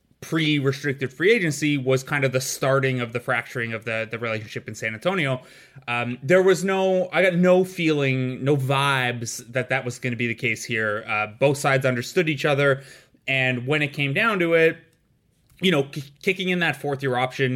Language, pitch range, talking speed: English, 125-150 Hz, 200 wpm